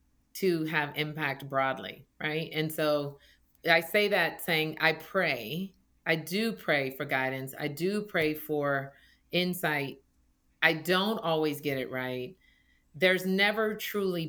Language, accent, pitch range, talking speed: English, American, 150-180 Hz, 135 wpm